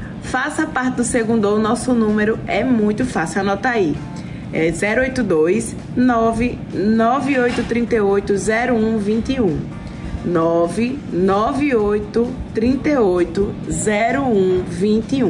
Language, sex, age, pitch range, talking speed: Portuguese, female, 20-39, 215-260 Hz, 75 wpm